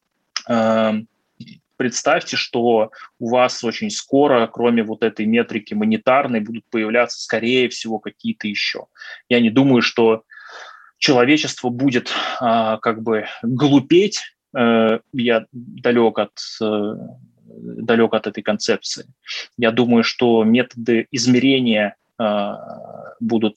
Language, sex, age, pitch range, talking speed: Russian, male, 20-39, 110-125 Hz, 95 wpm